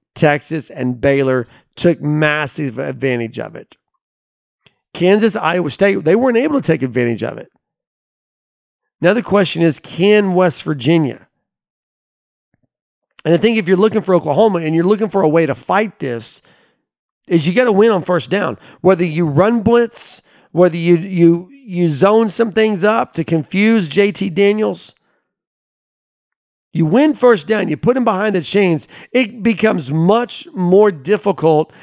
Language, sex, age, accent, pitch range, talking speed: English, male, 40-59, American, 155-205 Hz, 155 wpm